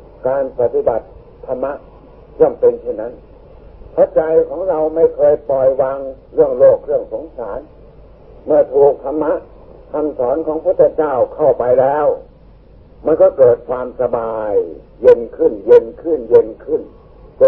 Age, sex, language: 60-79, male, Thai